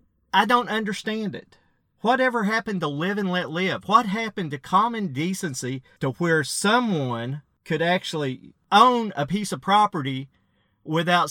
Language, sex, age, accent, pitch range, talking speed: English, male, 40-59, American, 140-190 Hz, 145 wpm